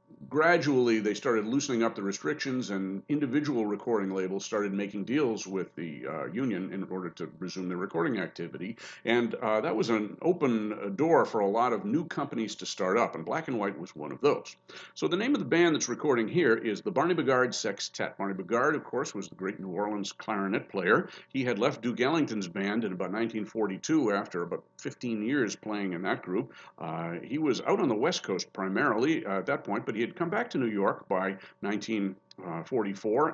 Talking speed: 210 wpm